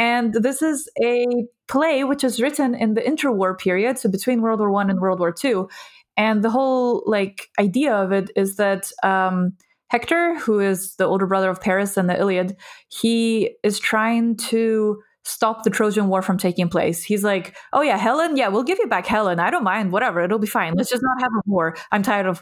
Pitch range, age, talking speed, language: 190-230 Hz, 20-39, 215 wpm, English